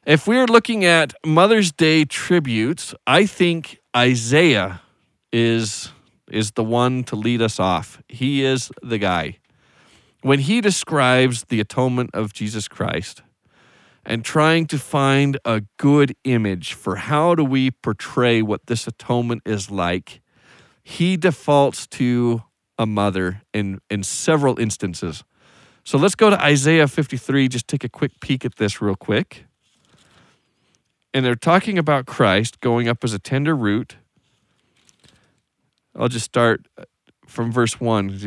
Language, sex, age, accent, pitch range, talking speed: English, male, 40-59, American, 105-140 Hz, 135 wpm